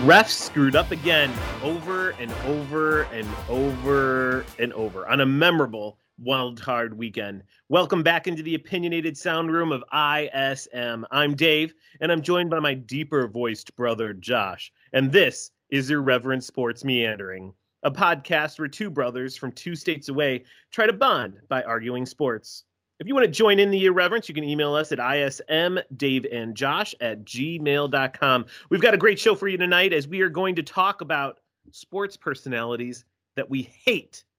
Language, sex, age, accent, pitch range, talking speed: English, male, 30-49, American, 120-165 Hz, 165 wpm